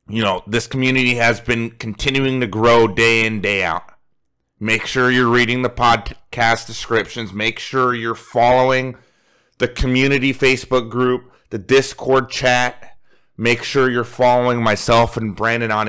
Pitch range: 115-135 Hz